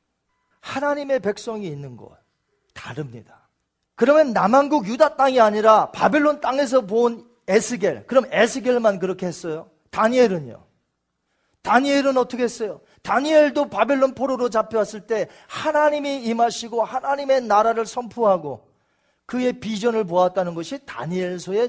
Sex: male